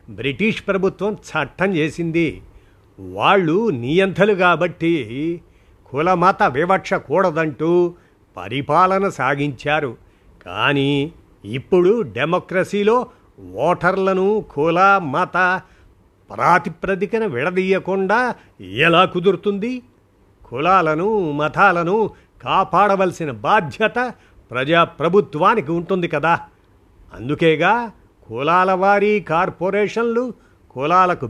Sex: male